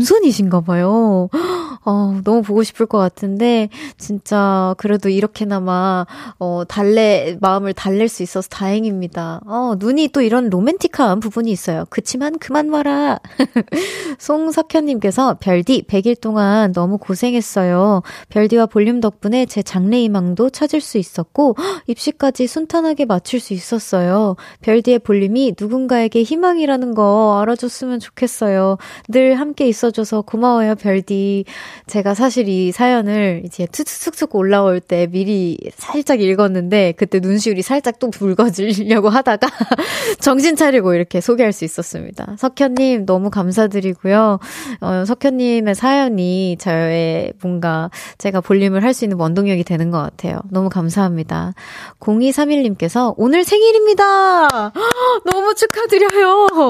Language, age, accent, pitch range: Korean, 20-39, native, 195-270 Hz